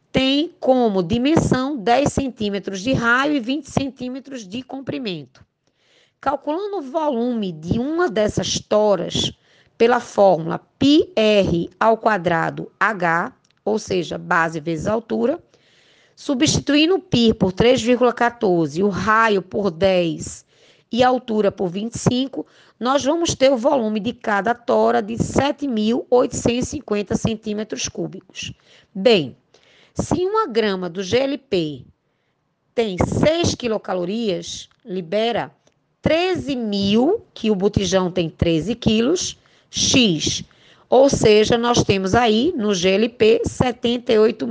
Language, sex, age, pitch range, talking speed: Portuguese, female, 20-39, 200-265 Hz, 110 wpm